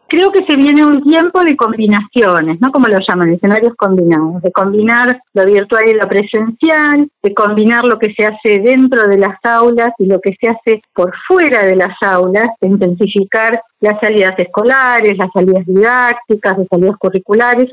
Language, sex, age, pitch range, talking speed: Spanish, female, 40-59, 190-235 Hz, 175 wpm